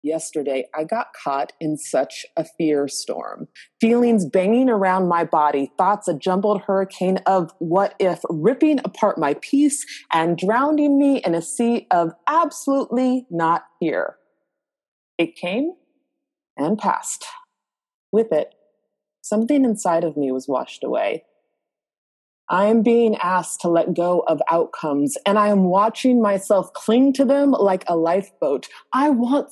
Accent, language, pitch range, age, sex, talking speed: American, English, 165-245 Hz, 30-49, female, 140 wpm